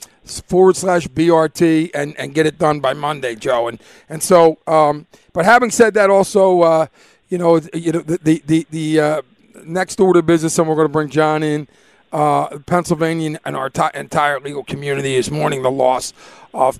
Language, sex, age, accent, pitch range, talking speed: English, male, 50-69, American, 145-175 Hz, 185 wpm